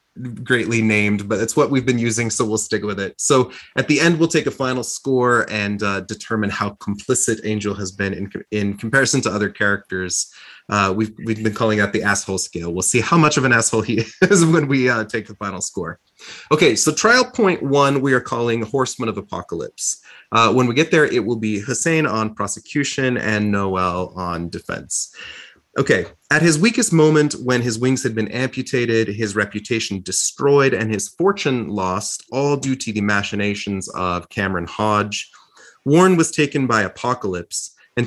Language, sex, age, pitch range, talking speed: English, male, 30-49, 105-130 Hz, 190 wpm